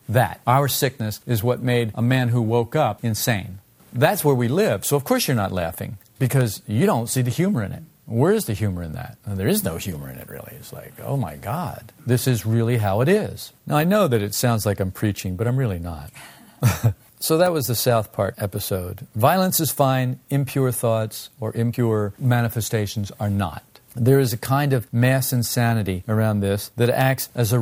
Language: English